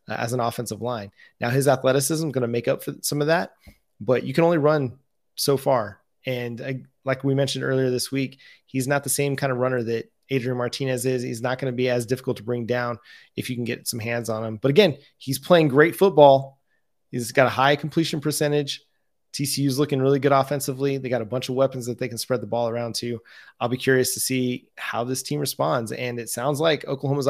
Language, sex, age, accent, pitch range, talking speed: English, male, 20-39, American, 120-145 Hz, 230 wpm